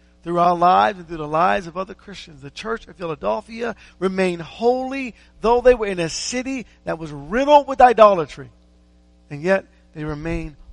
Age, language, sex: 50-69, English, male